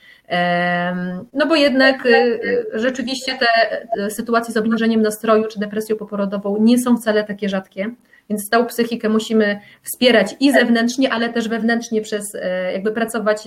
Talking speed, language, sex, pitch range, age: 135 wpm, Polish, female, 200-235 Hz, 30-49